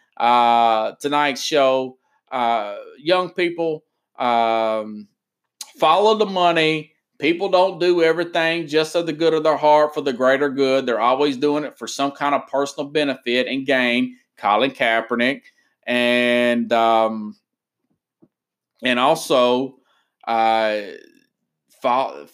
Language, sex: English, male